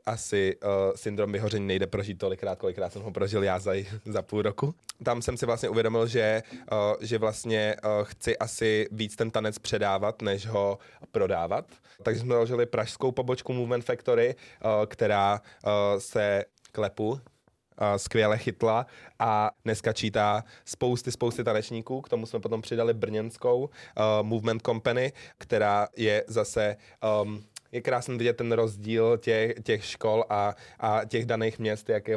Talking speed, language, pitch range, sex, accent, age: 155 wpm, Czech, 105-115 Hz, male, native, 20-39